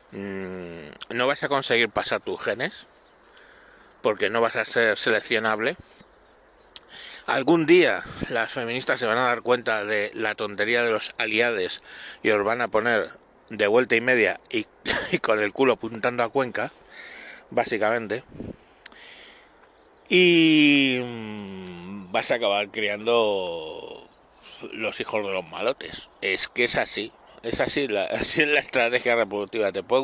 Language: Spanish